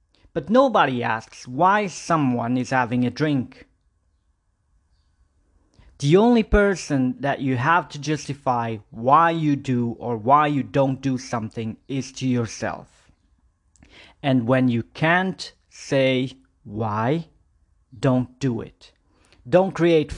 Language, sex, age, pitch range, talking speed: English, male, 40-59, 120-165 Hz, 120 wpm